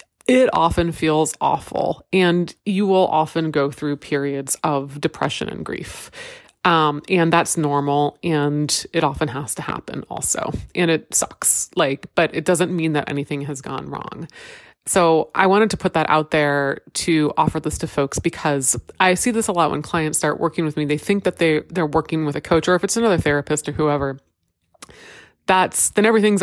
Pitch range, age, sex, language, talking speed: 145-185 Hz, 20-39, female, English, 190 wpm